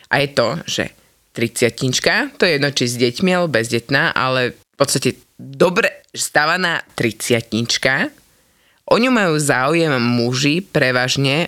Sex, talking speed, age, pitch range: female, 130 wpm, 20-39, 125-155 Hz